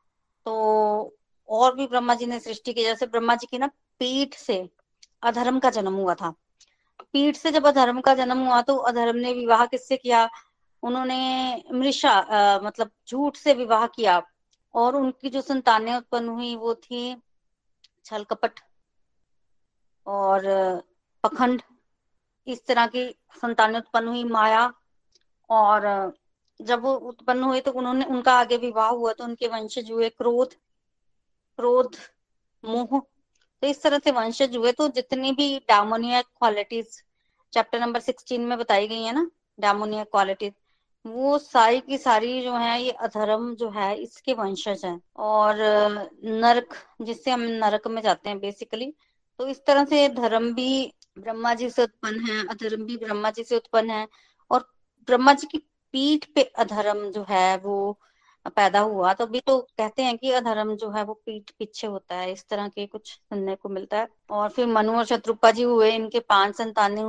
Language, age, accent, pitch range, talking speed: Hindi, 20-39, native, 215-255 Hz, 160 wpm